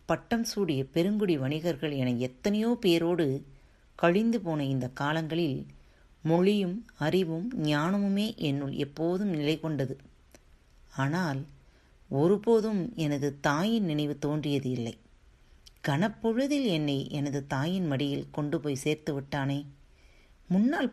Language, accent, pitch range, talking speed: Tamil, native, 130-180 Hz, 100 wpm